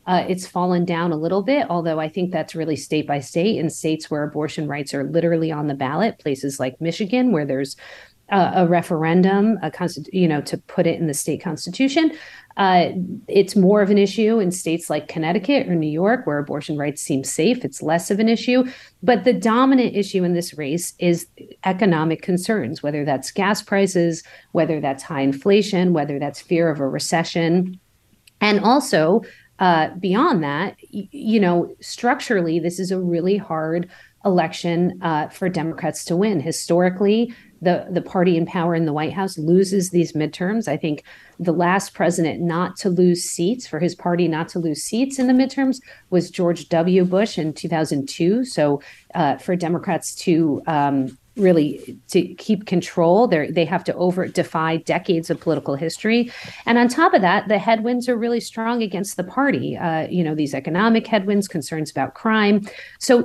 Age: 50-69